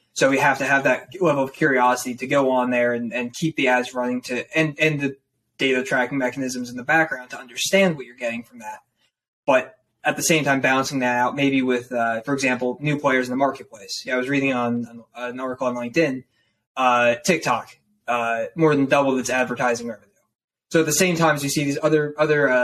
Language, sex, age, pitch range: English, male, 20-39, 125-145 Hz